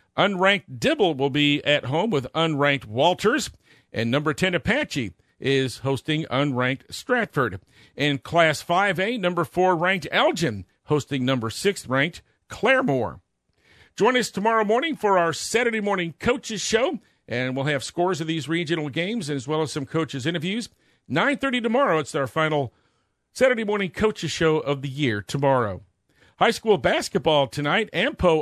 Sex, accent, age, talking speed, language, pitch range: male, American, 50-69, 150 wpm, English, 135-190 Hz